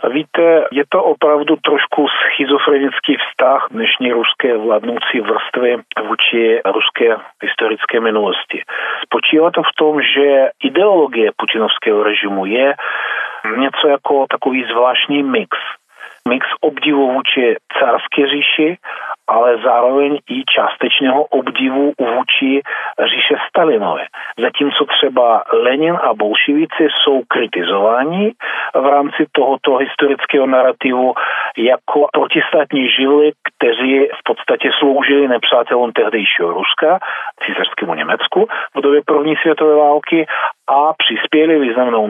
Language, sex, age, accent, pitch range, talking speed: Czech, male, 50-69, native, 125-155 Hz, 105 wpm